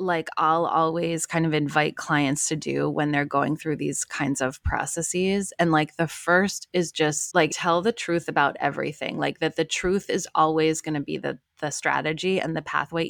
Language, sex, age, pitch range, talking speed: English, female, 20-39, 155-190 Hz, 200 wpm